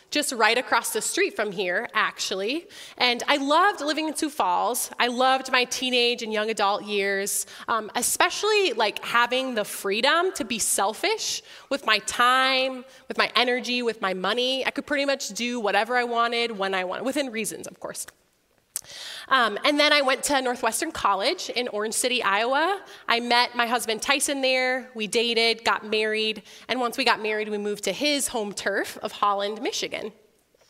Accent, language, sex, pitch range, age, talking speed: American, English, female, 220-280 Hz, 20-39, 180 wpm